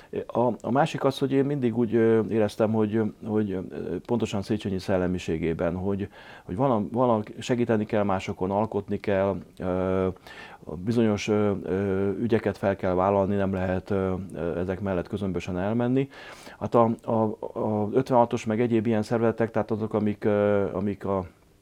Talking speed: 135 wpm